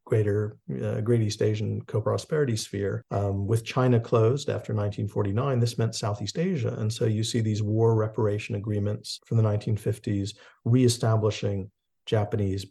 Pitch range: 110-130 Hz